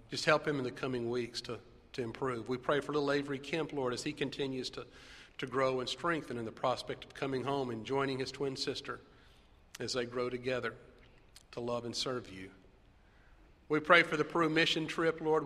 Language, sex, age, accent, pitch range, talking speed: English, male, 40-59, American, 115-150 Hz, 205 wpm